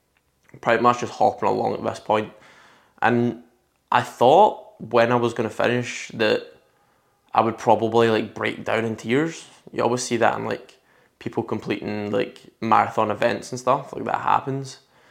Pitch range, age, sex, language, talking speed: 110-125 Hz, 20-39, male, English, 165 wpm